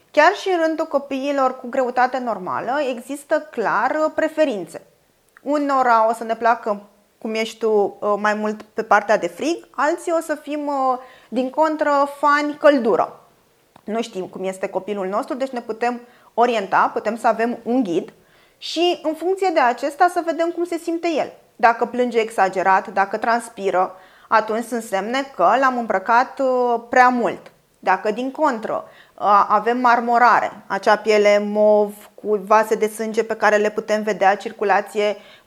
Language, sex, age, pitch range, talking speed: Romanian, female, 20-39, 215-285 Hz, 150 wpm